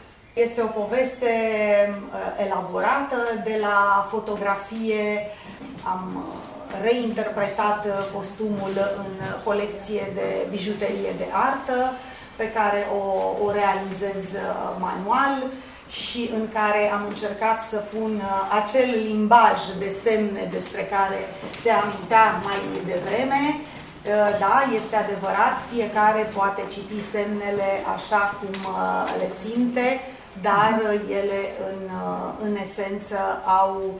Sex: female